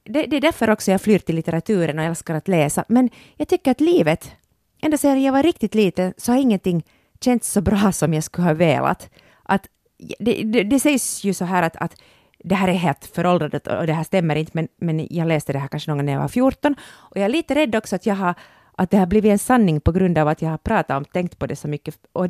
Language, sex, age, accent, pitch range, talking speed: Swedish, female, 30-49, Finnish, 165-245 Hz, 260 wpm